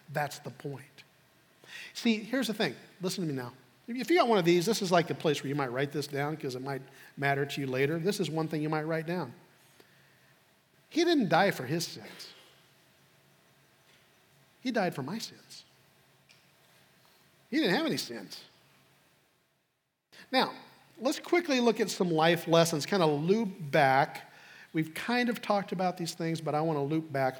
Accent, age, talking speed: American, 50-69, 185 wpm